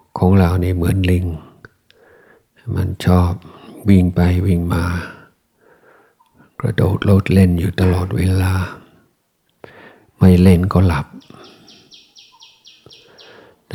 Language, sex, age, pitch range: Thai, male, 60-79, 85-95 Hz